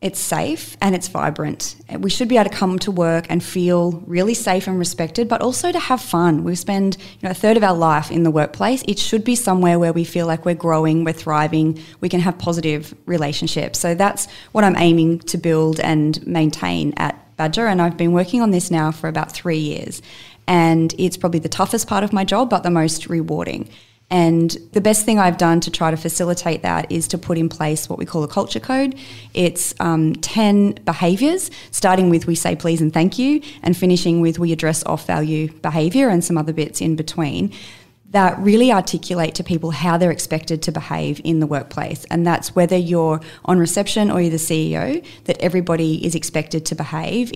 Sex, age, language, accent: female, 20-39, English, Australian